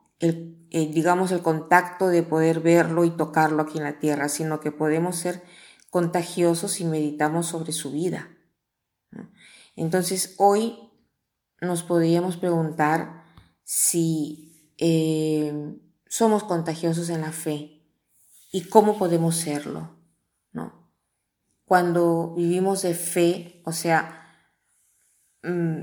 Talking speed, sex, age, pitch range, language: 110 wpm, female, 30-49, 155-175 Hz, Spanish